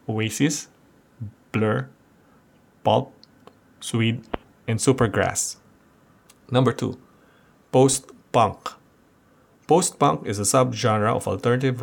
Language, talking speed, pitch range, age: English, 75 wpm, 105-130 Hz, 20-39